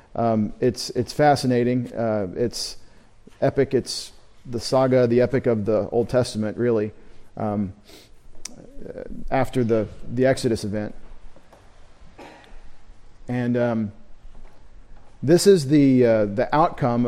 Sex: male